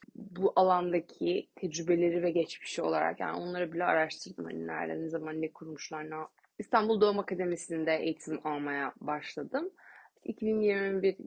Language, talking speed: Turkish, 130 wpm